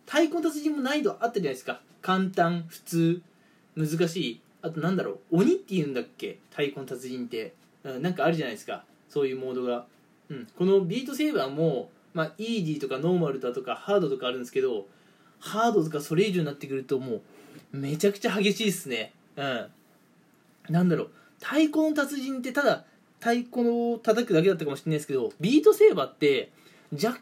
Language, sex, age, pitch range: Japanese, male, 20-39, 165-235 Hz